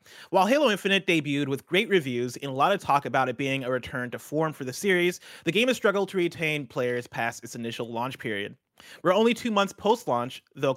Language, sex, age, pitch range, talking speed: English, male, 30-49, 125-180 Hz, 225 wpm